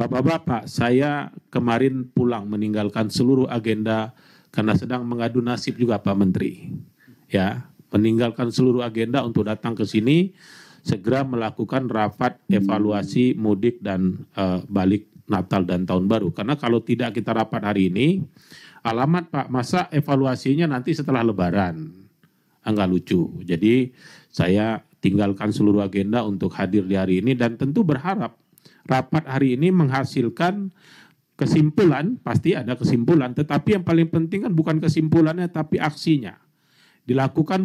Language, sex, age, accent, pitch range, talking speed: Indonesian, male, 40-59, native, 115-165 Hz, 130 wpm